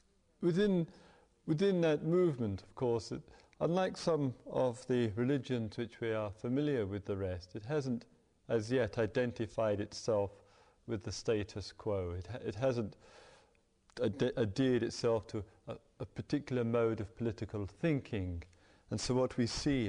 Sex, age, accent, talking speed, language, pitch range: male, 40-59, British, 150 wpm, English, 100-130 Hz